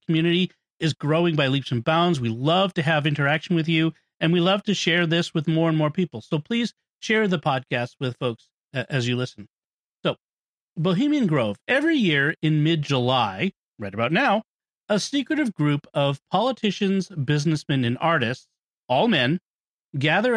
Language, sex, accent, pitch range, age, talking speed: English, male, American, 140-185 Hz, 40-59, 165 wpm